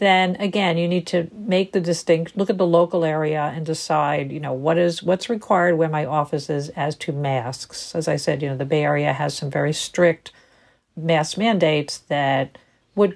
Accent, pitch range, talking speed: American, 150-180 Hz, 200 wpm